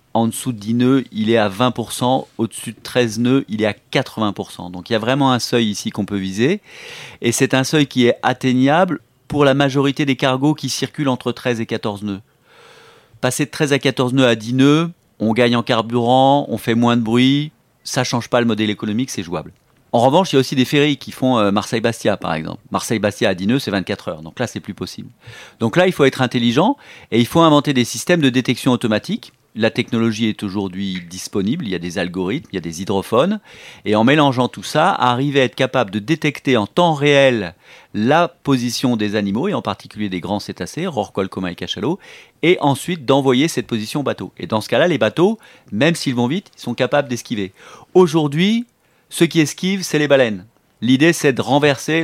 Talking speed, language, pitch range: 220 wpm, French, 110-145 Hz